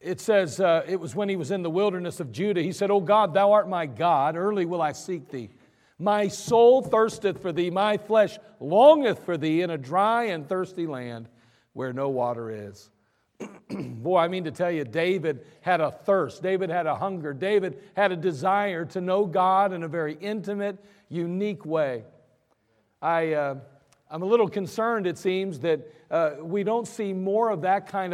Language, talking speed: English, 190 wpm